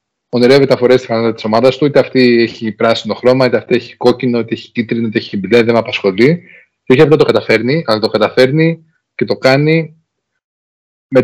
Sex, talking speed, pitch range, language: male, 185 wpm, 120-150 Hz, Greek